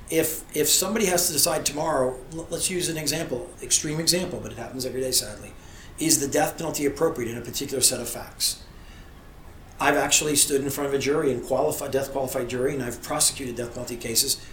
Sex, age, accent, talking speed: male, 40-59, American, 200 wpm